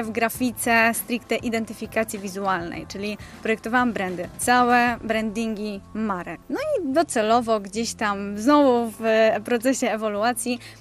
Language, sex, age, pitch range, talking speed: Polish, female, 20-39, 220-265 Hz, 110 wpm